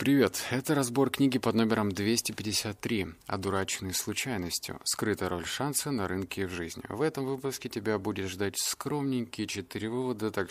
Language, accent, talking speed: Russian, native, 150 wpm